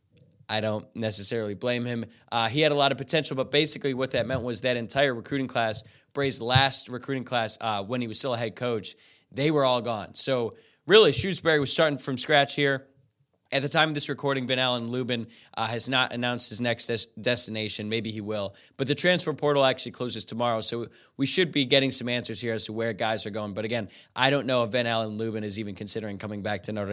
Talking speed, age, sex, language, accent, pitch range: 225 wpm, 20-39, male, English, American, 115-140 Hz